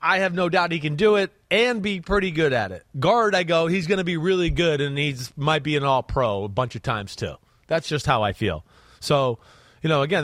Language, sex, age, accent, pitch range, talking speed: English, male, 30-49, American, 130-175 Hz, 250 wpm